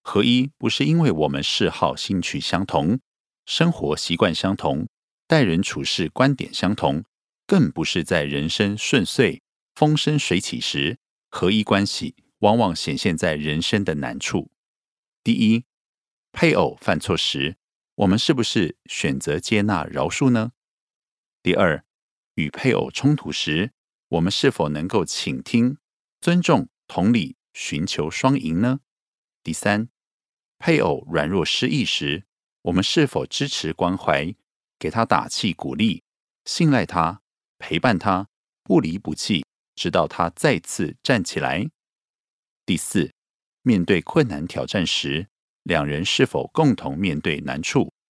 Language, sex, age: Korean, male, 50-69